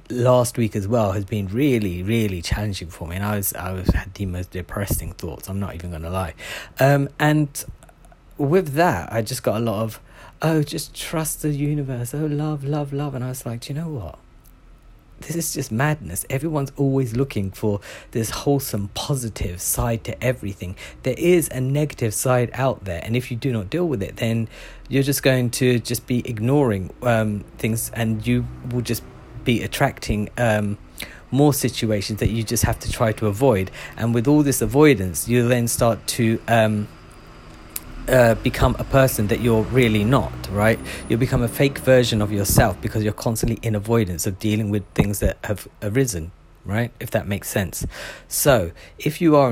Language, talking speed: English, 190 wpm